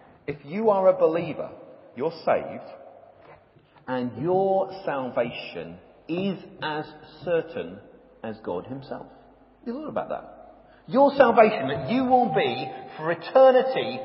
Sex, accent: male, British